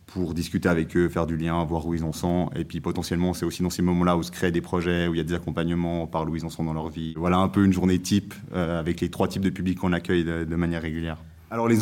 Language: French